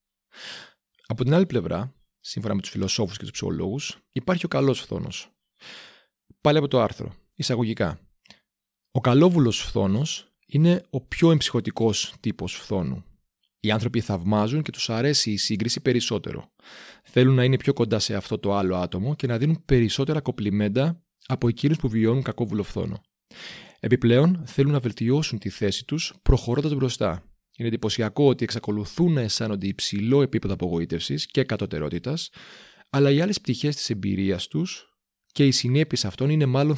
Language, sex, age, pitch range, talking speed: Greek, male, 30-49, 105-140 Hz, 150 wpm